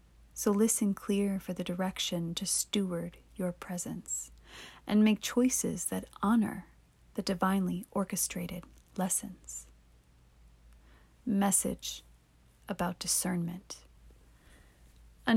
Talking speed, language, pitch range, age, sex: 90 wpm, English, 175-210 Hz, 30-49, female